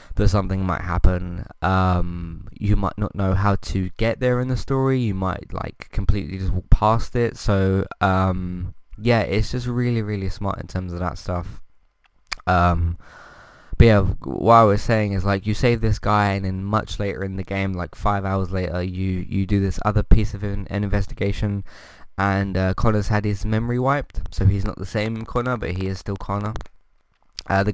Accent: British